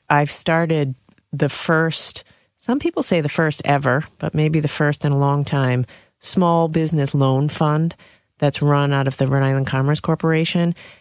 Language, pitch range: English, 140-170 Hz